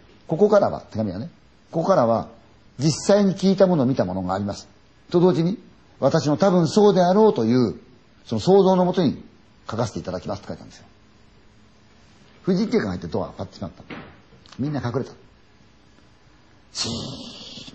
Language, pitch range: Chinese, 100-145 Hz